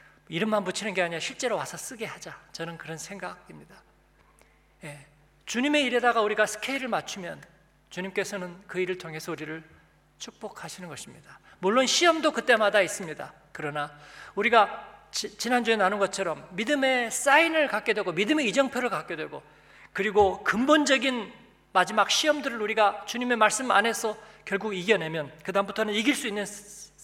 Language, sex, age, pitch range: Korean, male, 40-59, 165-235 Hz